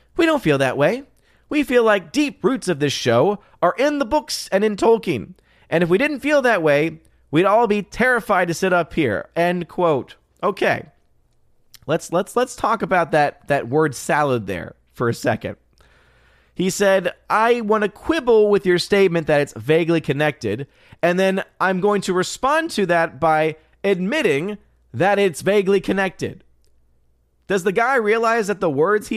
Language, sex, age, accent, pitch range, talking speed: English, male, 30-49, American, 145-215 Hz, 175 wpm